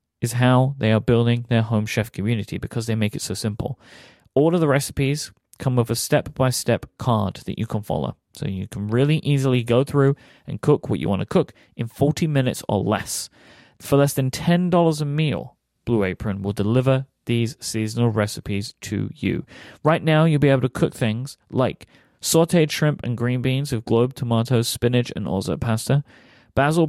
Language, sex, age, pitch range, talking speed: English, male, 30-49, 105-135 Hz, 185 wpm